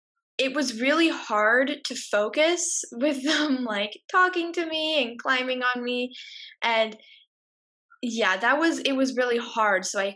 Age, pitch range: 10-29, 215-295 Hz